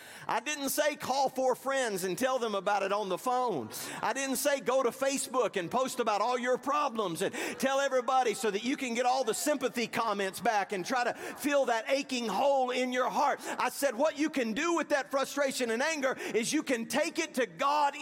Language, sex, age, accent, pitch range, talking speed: English, male, 50-69, American, 200-270 Hz, 225 wpm